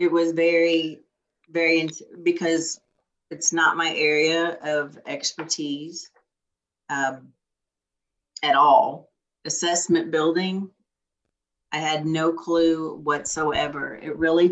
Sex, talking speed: female, 95 wpm